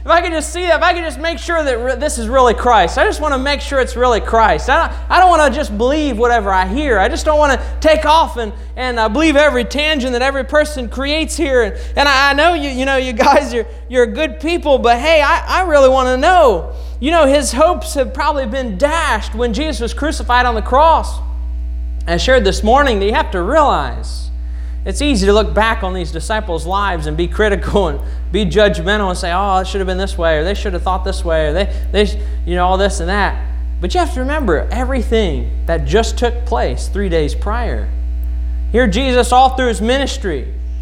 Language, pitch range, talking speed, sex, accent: English, 195-280 Hz, 240 wpm, male, American